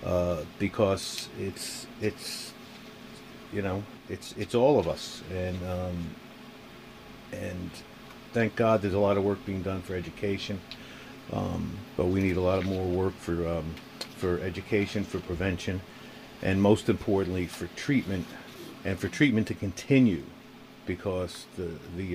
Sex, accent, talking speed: male, American, 145 wpm